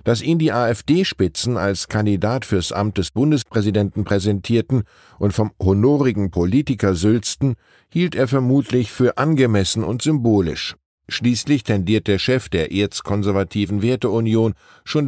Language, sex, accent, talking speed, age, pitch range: German, male, German, 125 wpm, 10-29, 95-125 Hz